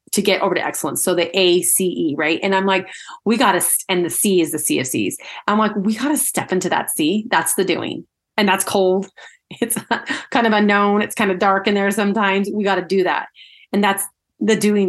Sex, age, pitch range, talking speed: female, 30-49, 180-215 Hz, 235 wpm